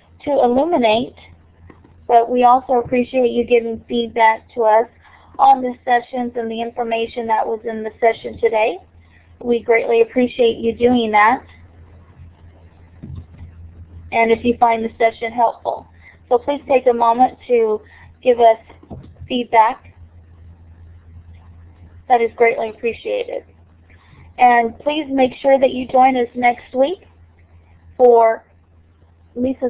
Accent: American